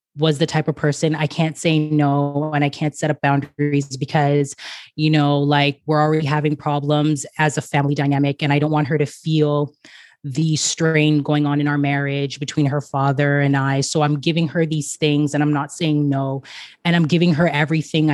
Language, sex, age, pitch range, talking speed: English, female, 20-39, 145-160 Hz, 205 wpm